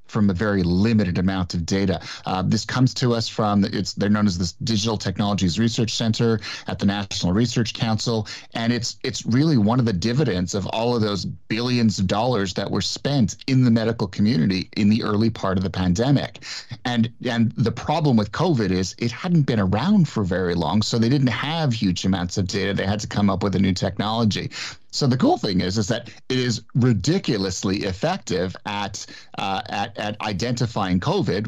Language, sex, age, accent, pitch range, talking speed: English, male, 30-49, American, 100-125 Hz, 200 wpm